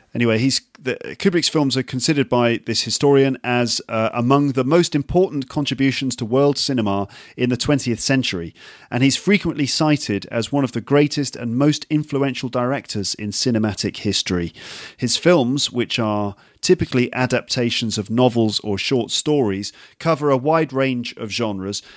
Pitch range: 110-140 Hz